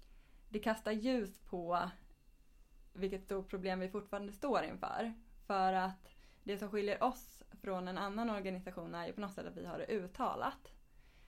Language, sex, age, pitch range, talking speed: Swedish, female, 20-39, 180-205 Hz, 160 wpm